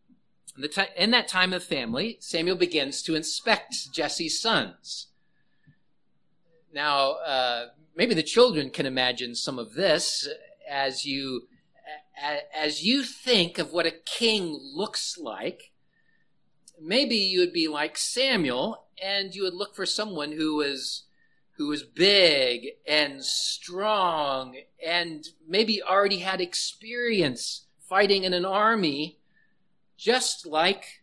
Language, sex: English, male